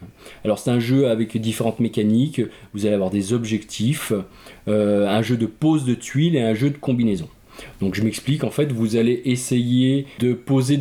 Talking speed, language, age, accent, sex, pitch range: 190 wpm, French, 20-39, French, male, 105-135 Hz